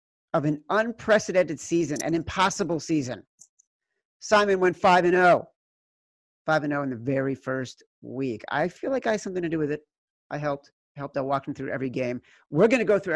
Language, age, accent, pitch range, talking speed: English, 40-59, American, 140-175 Hz, 175 wpm